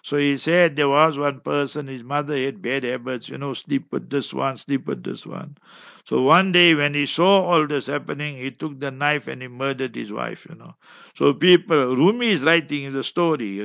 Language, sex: English, male